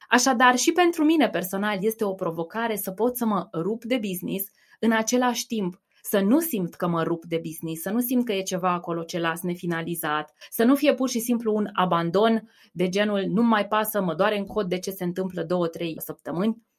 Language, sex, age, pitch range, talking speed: Romanian, female, 20-39, 175-225 Hz, 210 wpm